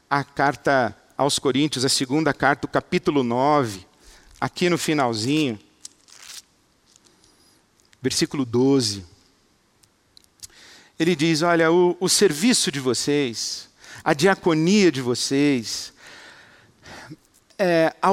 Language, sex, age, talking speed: Portuguese, male, 50-69, 95 wpm